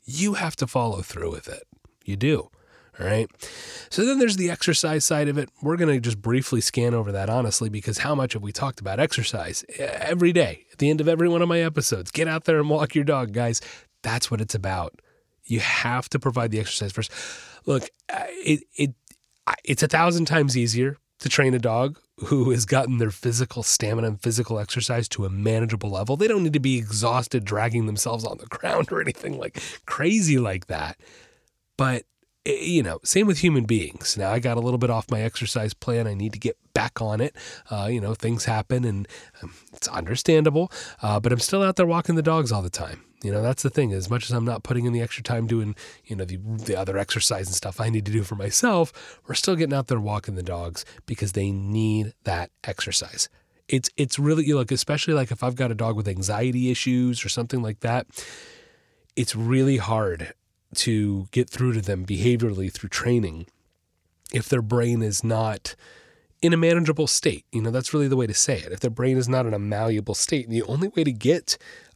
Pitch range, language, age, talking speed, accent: 110-145 Hz, English, 30-49, 215 wpm, American